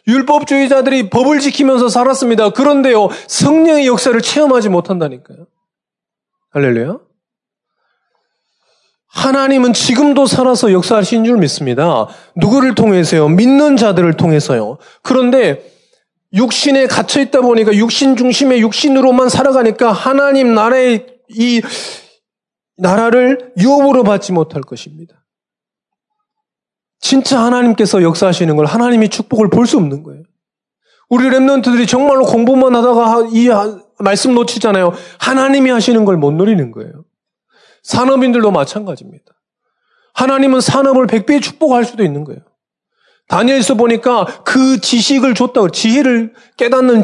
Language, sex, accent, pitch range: Korean, male, native, 205-265 Hz